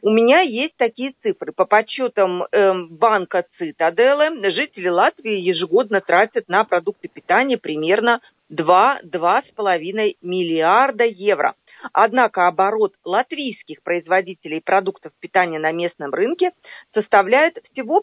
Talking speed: 105 wpm